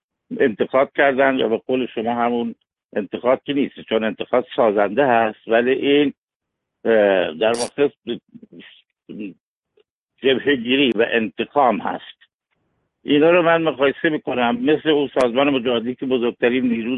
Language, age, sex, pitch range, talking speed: Persian, 60-79, male, 115-135 Hz, 125 wpm